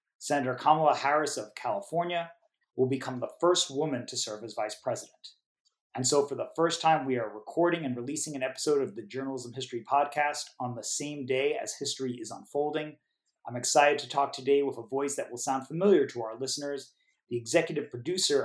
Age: 30-49